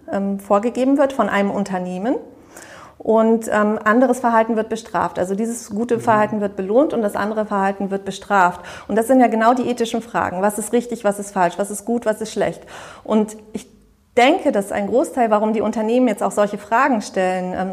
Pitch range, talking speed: 195-230 Hz, 195 wpm